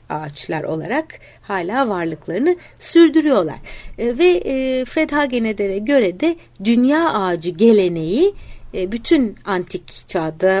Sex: female